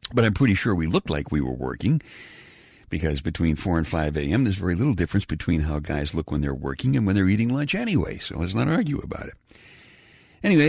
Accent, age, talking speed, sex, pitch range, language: American, 60-79, 225 wpm, male, 80-110 Hz, English